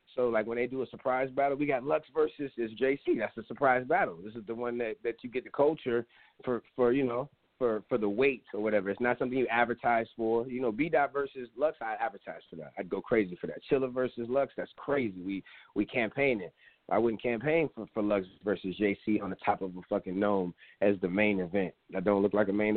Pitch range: 100-145 Hz